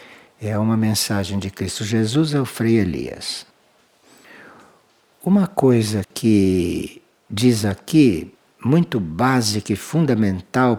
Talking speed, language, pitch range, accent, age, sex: 100 wpm, Portuguese, 105-150 Hz, Brazilian, 60-79, male